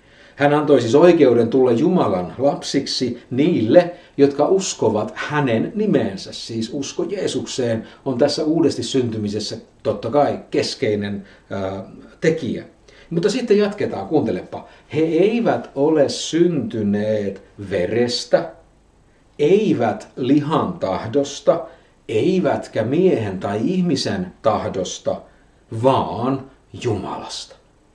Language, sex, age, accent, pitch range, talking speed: Finnish, male, 50-69, native, 110-145 Hz, 90 wpm